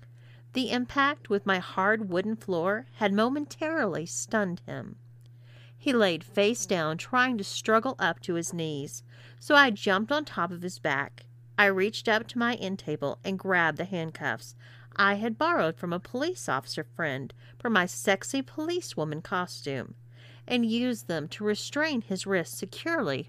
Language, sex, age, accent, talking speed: English, female, 40-59, American, 160 wpm